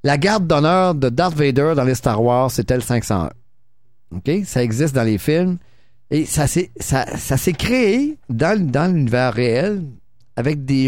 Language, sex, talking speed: French, male, 165 wpm